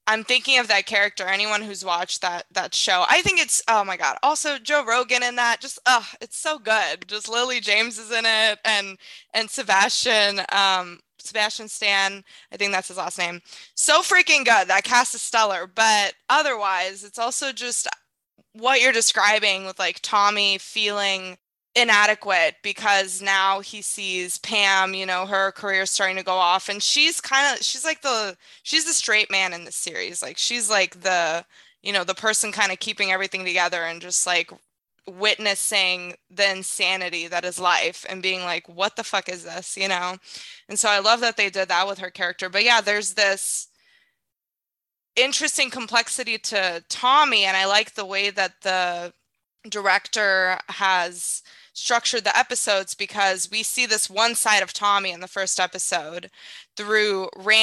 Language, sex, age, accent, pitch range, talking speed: English, female, 20-39, American, 185-220 Hz, 175 wpm